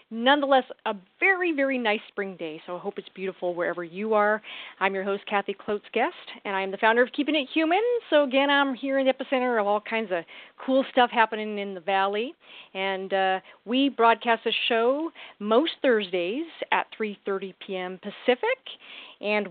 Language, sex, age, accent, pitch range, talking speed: English, female, 40-59, American, 200-275 Hz, 185 wpm